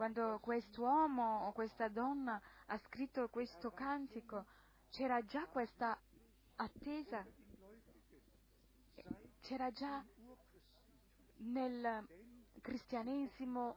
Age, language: 20-39, Italian